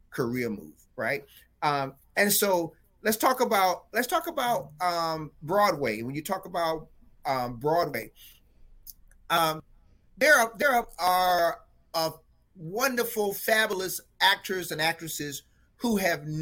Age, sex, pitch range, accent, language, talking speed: 30-49, male, 140-200 Hz, American, English, 125 wpm